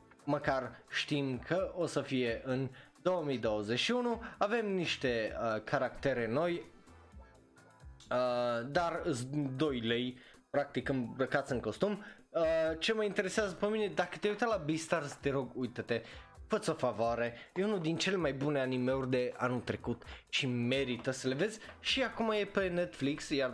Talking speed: 150 wpm